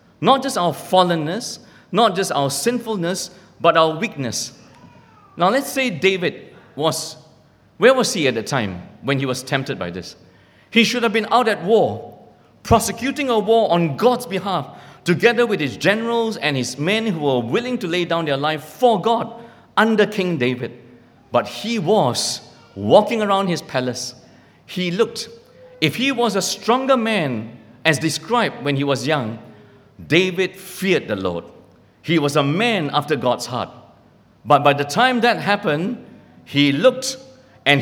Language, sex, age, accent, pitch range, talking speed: English, male, 50-69, Malaysian, 135-220 Hz, 160 wpm